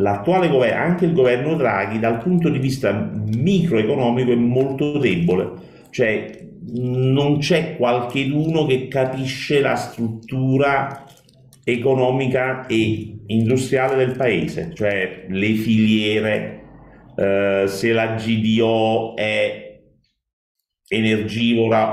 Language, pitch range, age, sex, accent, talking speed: Italian, 100-130 Hz, 50-69, male, native, 95 wpm